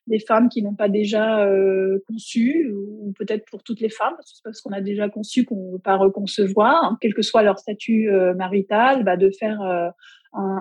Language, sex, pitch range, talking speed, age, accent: French, female, 195-230 Hz, 225 wpm, 30-49, French